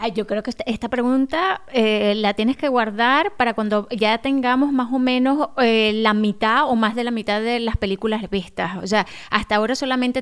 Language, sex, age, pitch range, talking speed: Spanish, female, 20-39, 230-290 Hz, 200 wpm